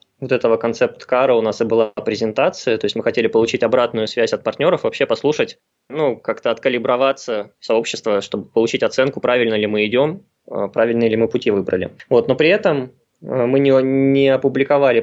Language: Russian